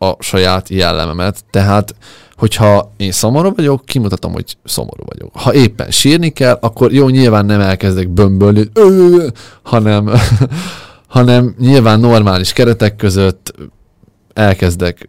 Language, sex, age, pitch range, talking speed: Hungarian, male, 20-39, 95-110 Hz, 115 wpm